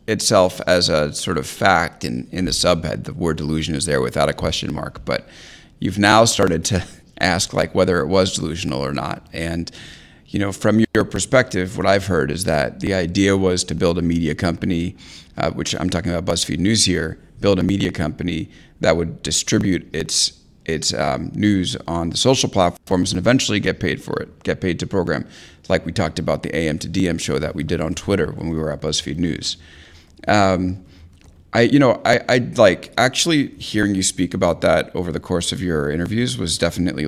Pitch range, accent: 85-100 Hz, American